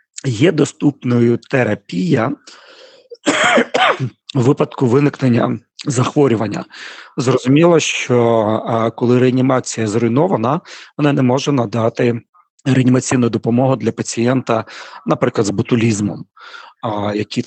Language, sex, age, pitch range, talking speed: Ukrainian, male, 40-59, 110-130 Hz, 80 wpm